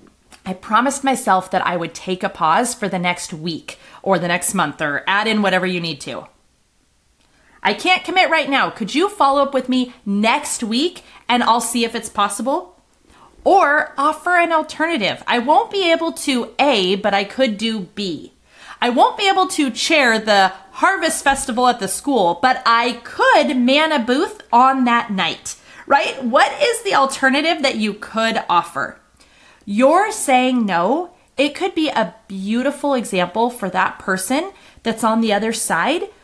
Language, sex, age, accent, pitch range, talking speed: English, female, 30-49, American, 215-305 Hz, 175 wpm